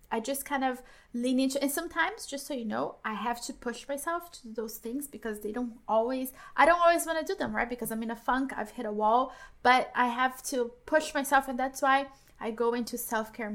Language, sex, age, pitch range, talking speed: English, female, 20-39, 220-265 Hz, 245 wpm